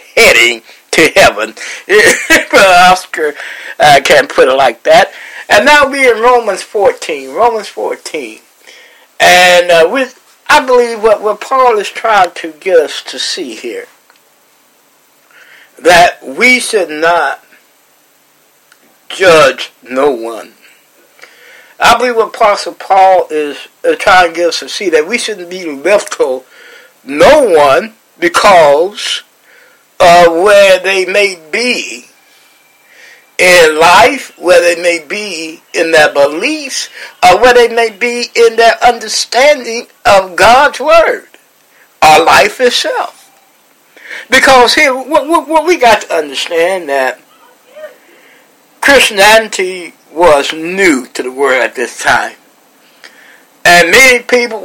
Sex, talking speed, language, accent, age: male, 125 wpm, English, American, 60-79